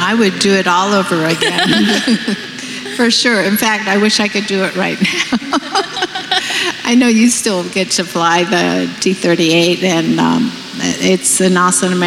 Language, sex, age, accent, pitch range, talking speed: English, female, 50-69, American, 180-215 Hz, 165 wpm